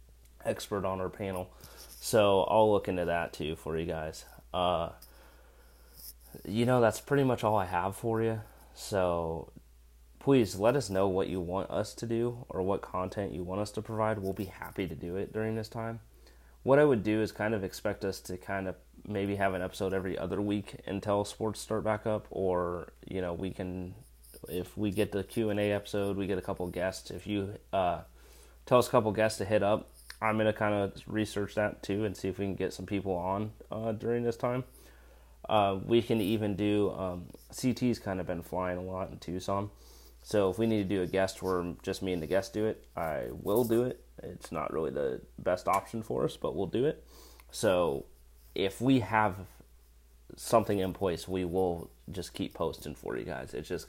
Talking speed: 210 wpm